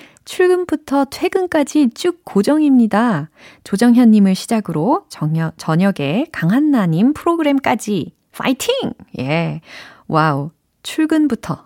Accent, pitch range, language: native, 160-255 Hz, Korean